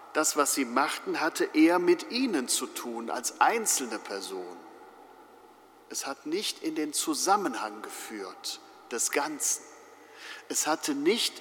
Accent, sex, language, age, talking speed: German, male, German, 50-69, 130 wpm